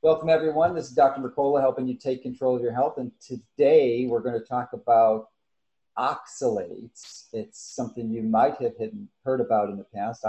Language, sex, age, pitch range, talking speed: English, male, 40-59, 110-130 Hz, 180 wpm